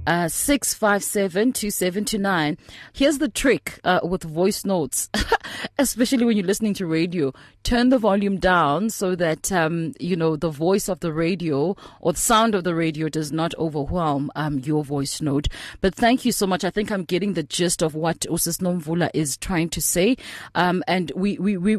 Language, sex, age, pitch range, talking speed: English, female, 30-49, 175-240 Hz, 195 wpm